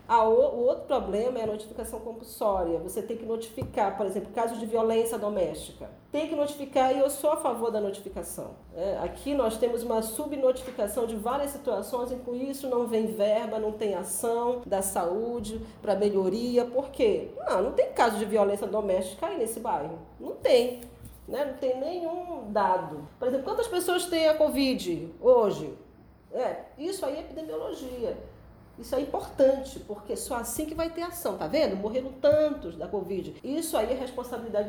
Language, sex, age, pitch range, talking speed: Portuguese, female, 40-59, 210-280 Hz, 175 wpm